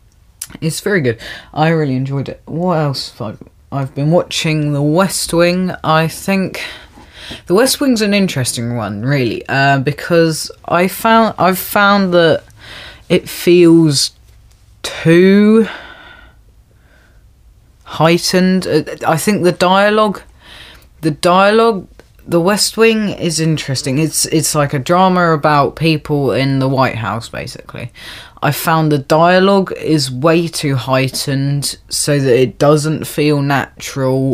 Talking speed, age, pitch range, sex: 130 wpm, 20-39, 135-170 Hz, female